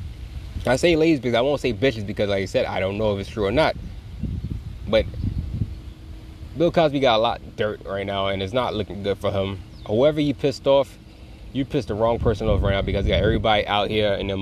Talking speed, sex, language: 235 wpm, male, English